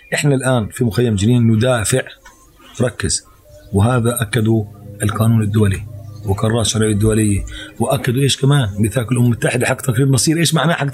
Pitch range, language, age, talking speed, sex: 115-140 Hz, Arabic, 30-49, 135 wpm, male